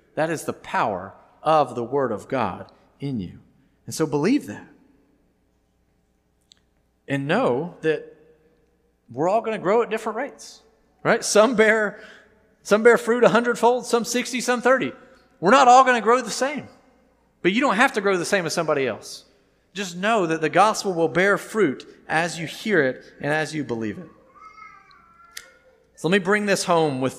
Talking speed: 175 wpm